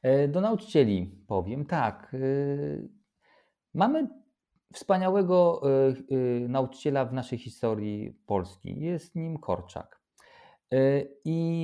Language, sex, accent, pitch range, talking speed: Polish, male, native, 110-150 Hz, 75 wpm